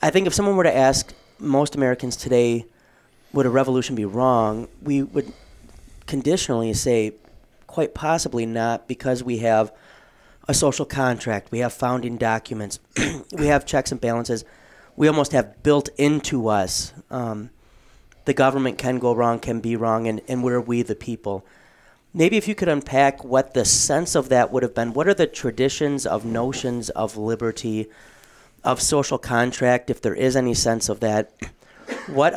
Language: English